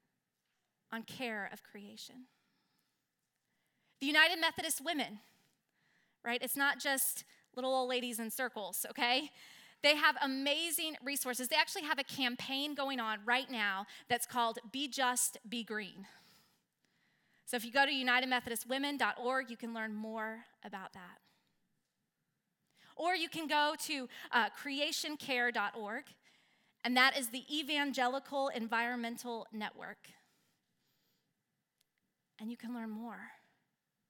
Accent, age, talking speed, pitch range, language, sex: American, 20-39, 120 wpm, 230-275 Hz, English, female